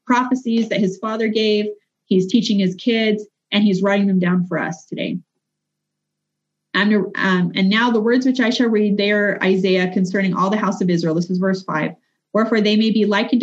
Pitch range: 185-225 Hz